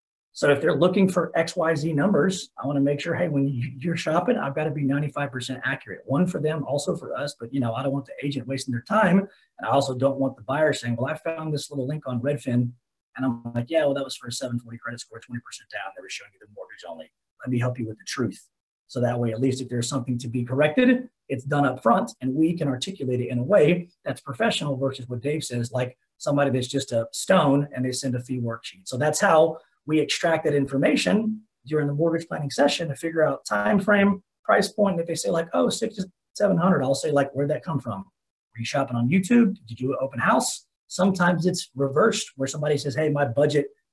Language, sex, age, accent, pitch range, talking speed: English, male, 30-49, American, 130-165 Hz, 245 wpm